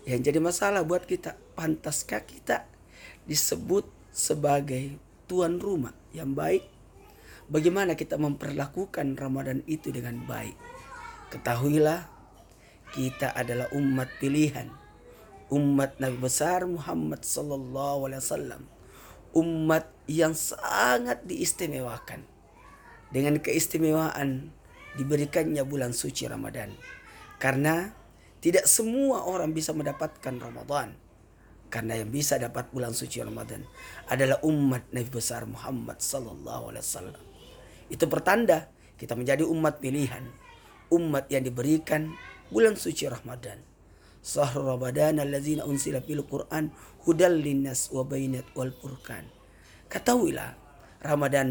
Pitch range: 130-155 Hz